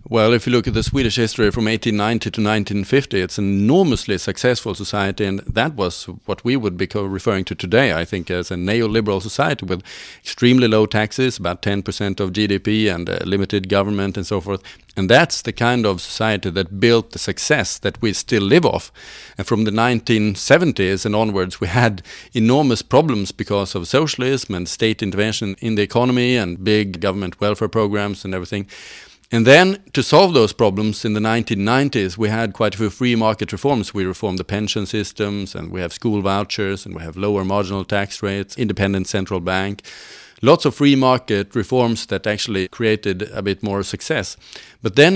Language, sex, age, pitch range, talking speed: English, male, 40-59, 100-115 Hz, 185 wpm